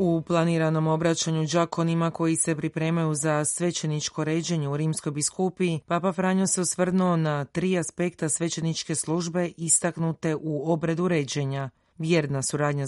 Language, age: Croatian, 30-49